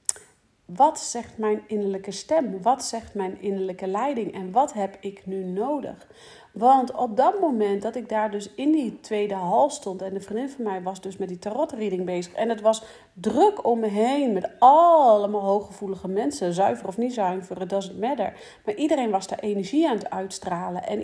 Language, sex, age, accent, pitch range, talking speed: Dutch, female, 40-59, Dutch, 190-250 Hz, 190 wpm